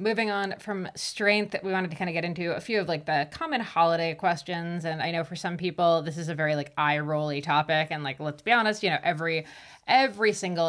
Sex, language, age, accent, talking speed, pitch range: female, English, 20-39, American, 240 wpm, 155-185 Hz